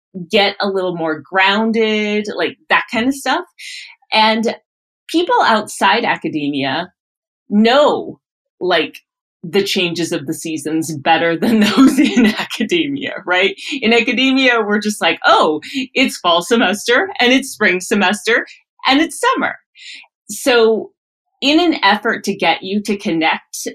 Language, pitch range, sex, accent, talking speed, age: English, 180-265 Hz, female, American, 130 wpm, 30-49